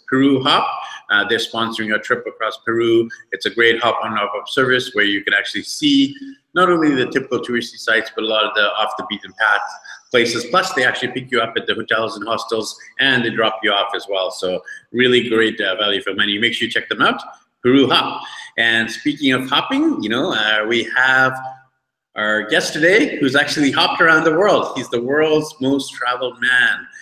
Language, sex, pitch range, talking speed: English, male, 115-145 Hz, 200 wpm